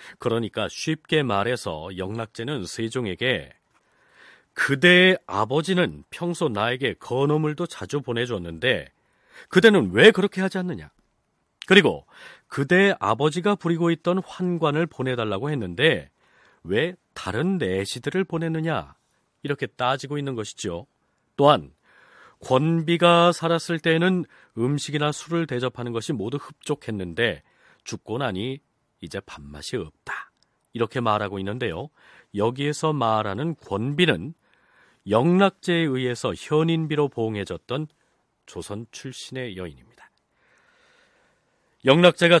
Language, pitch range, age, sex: Korean, 115-165 Hz, 40-59, male